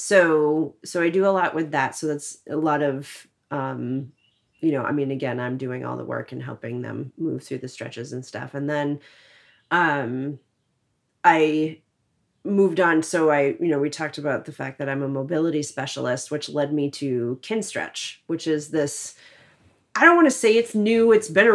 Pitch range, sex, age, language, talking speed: 135-165 Hz, female, 30-49, English, 200 wpm